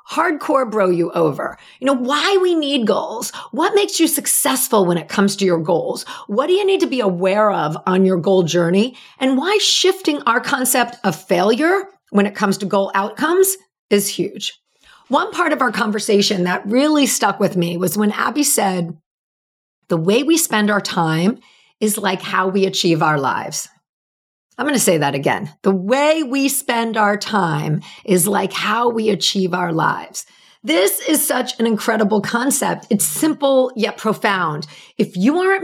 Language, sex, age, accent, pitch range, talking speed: English, female, 40-59, American, 195-285 Hz, 180 wpm